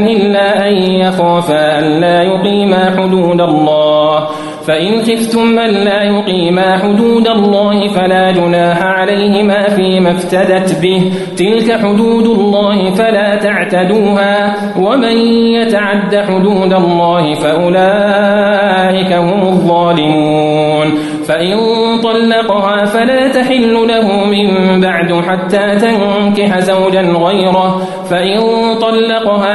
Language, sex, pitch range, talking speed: Arabic, male, 170-205 Hz, 95 wpm